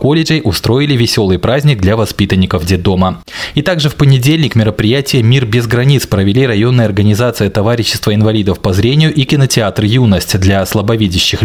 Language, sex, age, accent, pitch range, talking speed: Russian, male, 20-39, native, 100-130 Hz, 140 wpm